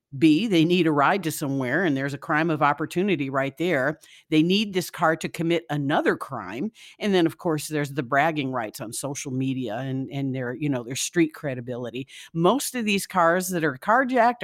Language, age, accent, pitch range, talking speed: English, 50-69, American, 145-195 Hz, 195 wpm